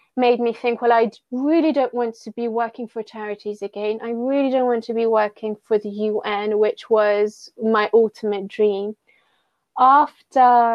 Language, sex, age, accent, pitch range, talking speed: English, female, 20-39, British, 210-235 Hz, 170 wpm